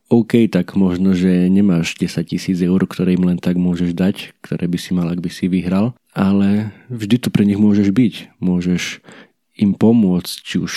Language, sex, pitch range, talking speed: Slovak, male, 90-100 Hz, 190 wpm